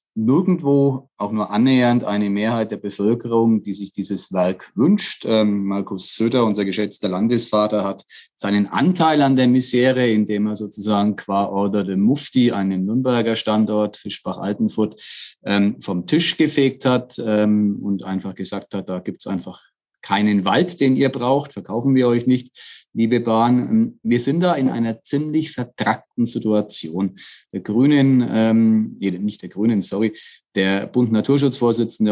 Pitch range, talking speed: 100-120 Hz, 145 wpm